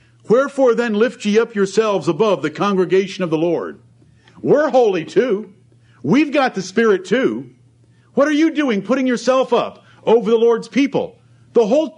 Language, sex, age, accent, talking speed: English, male, 50-69, American, 165 wpm